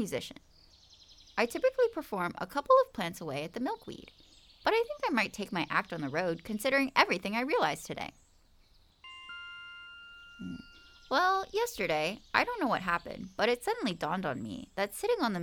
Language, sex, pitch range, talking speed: English, female, 180-290 Hz, 180 wpm